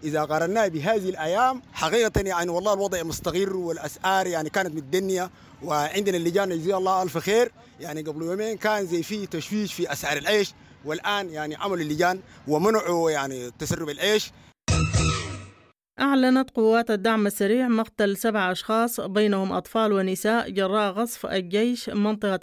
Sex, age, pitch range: male, 30-49, 190-220 Hz